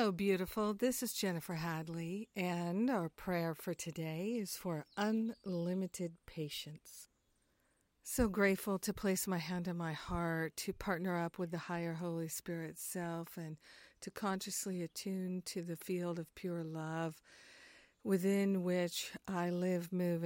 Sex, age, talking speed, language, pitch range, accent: female, 50-69, 140 wpm, English, 170-195 Hz, American